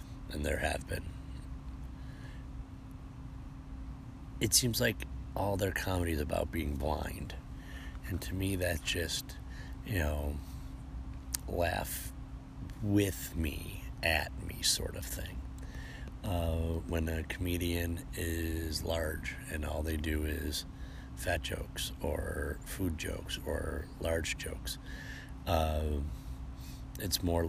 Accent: American